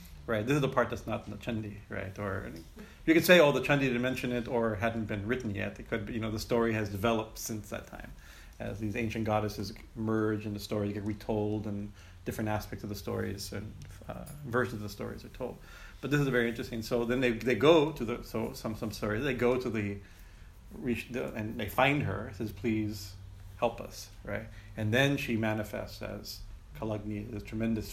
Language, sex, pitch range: English, male, 100-120 Hz